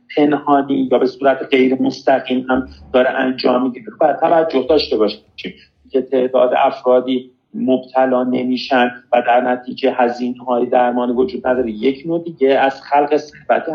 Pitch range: 125-165 Hz